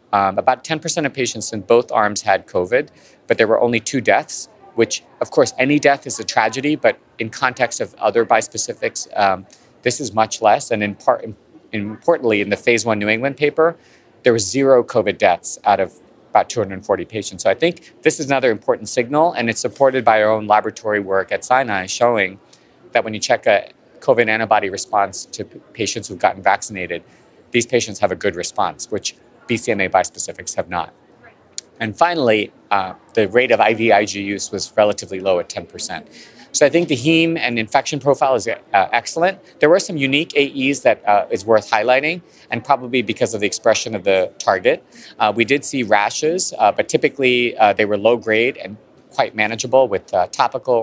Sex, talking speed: male, 190 wpm